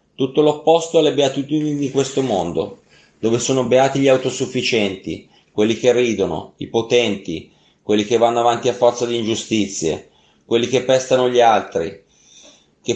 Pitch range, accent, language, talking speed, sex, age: 110-140 Hz, native, Italian, 145 wpm, male, 30-49